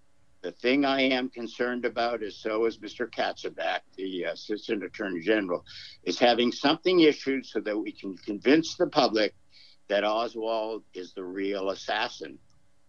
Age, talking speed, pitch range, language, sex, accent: 60-79, 150 wpm, 110-150 Hz, English, male, American